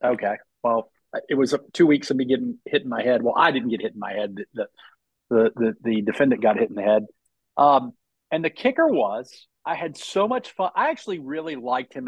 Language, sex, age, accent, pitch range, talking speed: English, male, 40-59, American, 130-195 Hz, 235 wpm